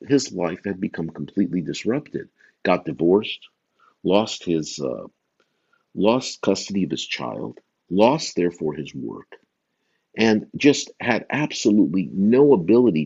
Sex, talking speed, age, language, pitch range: male, 120 wpm, 50-69, English, 85-130 Hz